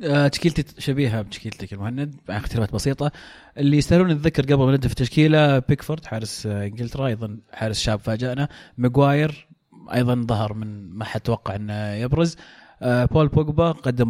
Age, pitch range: 30-49, 110-145 Hz